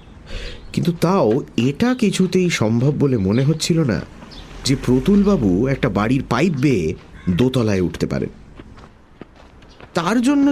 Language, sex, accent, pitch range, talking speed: English, male, Indian, 105-170 Hz, 115 wpm